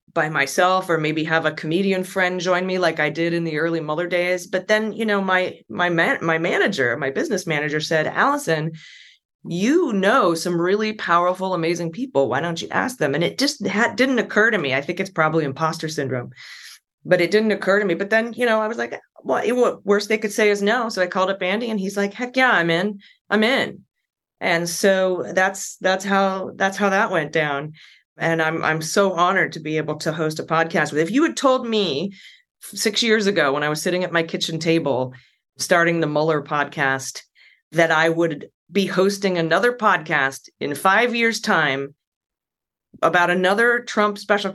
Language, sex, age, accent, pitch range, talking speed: English, female, 20-39, American, 155-200 Hz, 205 wpm